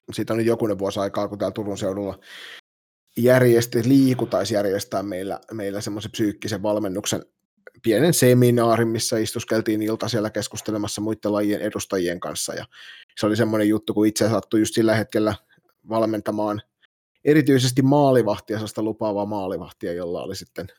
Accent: native